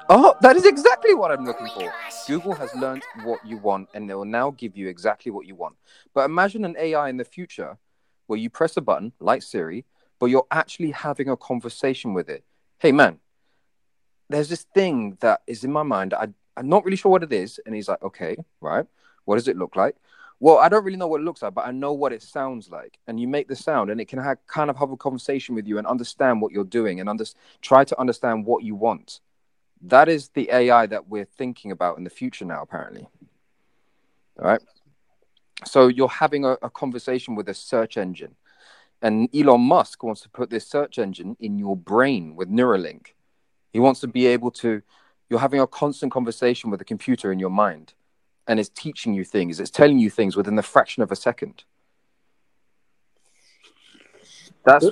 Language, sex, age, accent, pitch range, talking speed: English, male, 30-49, British, 110-145 Hz, 205 wpm